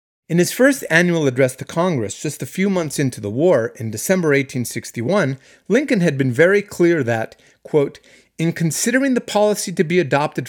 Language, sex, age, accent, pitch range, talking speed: English, male, 30-49, American, 130-195 Hz, 175 wpm